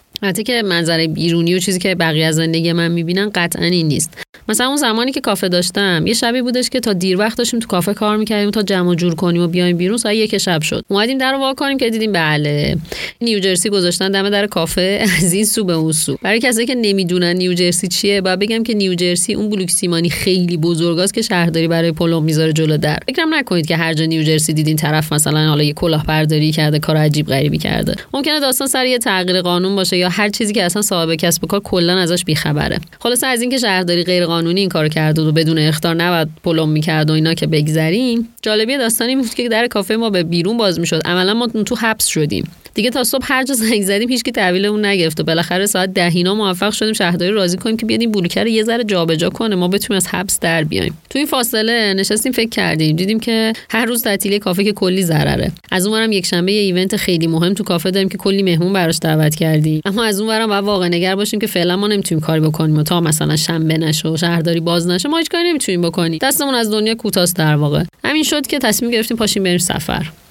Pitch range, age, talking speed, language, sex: 170-220 Hz, 30-49, 220 wpm, Persian, female